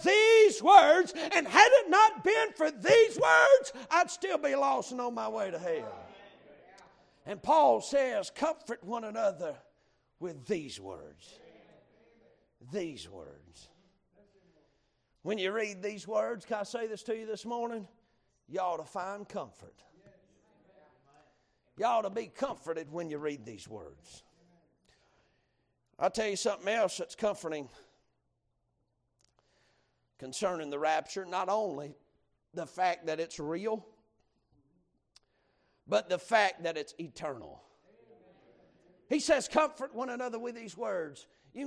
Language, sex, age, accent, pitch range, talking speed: English, male, 50-69, American, 185-305 Hz, 130 wpm